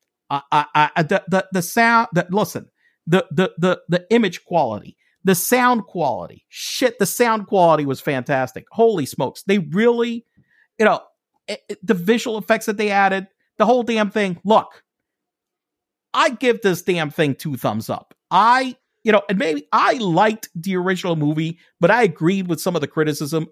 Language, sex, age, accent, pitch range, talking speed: English, male, 50-69, American, 160-230 Hz, 175 wpm